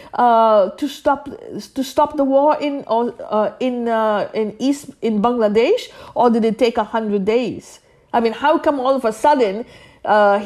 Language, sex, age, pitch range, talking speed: English, female, 50-69, 205-270 Hz, 180 wpm